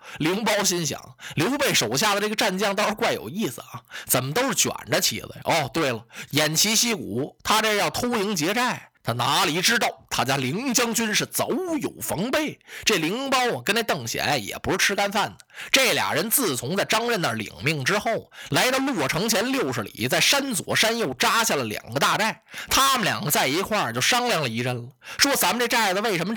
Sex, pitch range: male, 155-240 Hz